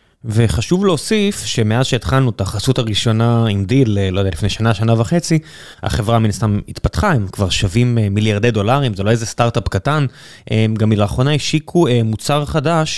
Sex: male